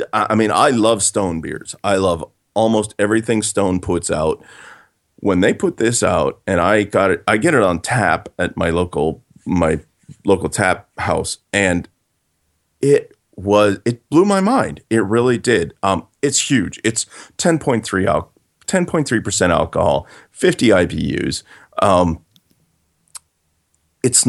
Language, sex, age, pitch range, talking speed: English, male, 40-59, 85-115 Hz, 140 wpm